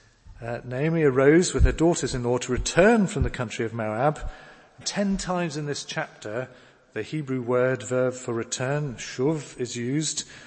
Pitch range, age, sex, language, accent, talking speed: 115-150 Hz, 40-59, male, English, British, 155 wpm